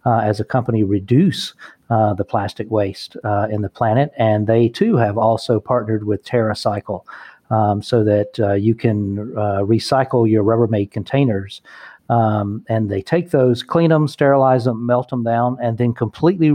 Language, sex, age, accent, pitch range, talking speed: English, male, 40-59, American, 110-125 Hz, 170 wpm